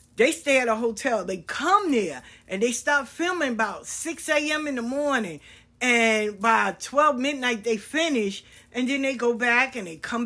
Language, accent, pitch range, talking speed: English, American, 190-255 Hz, 185 wpm